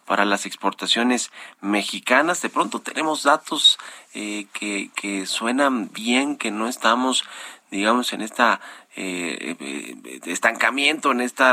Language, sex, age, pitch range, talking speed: Spanish, male, 40-59, 95-120 Hz, 120 wpm